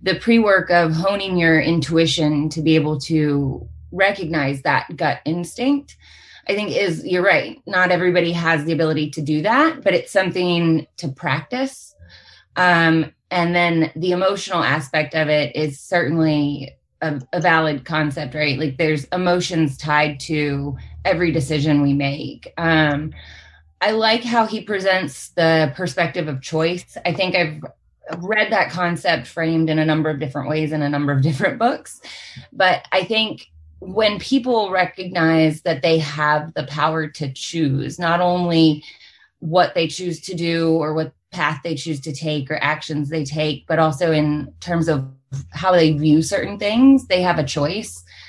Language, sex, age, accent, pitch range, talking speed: English, female, 20-39, American, 150-175 Hz, 160 wpm